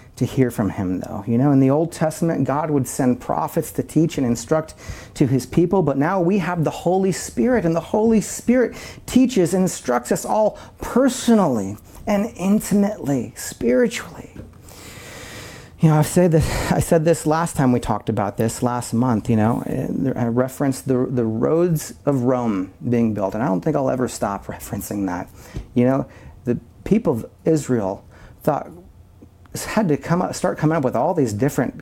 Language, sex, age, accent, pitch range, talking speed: English, male, 40-59, American, 115-155 Hz, 175 wpm